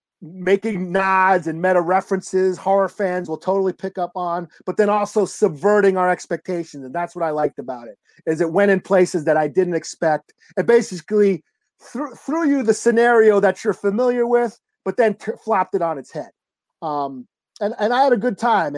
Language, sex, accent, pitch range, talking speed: English, male, American, 170-210 Hz, 195 wpm